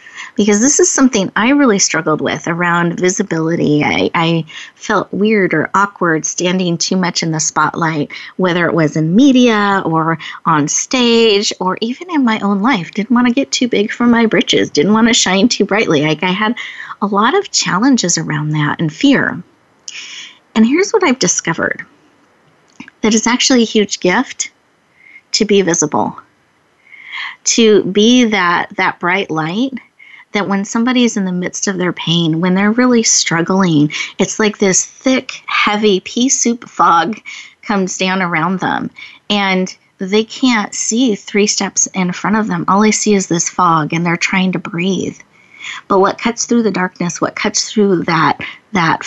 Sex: female